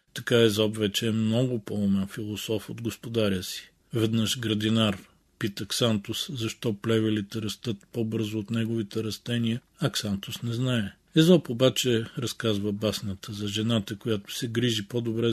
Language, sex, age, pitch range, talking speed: Bulgarian, male, 40-59, 105-120 Hz, 135 wpm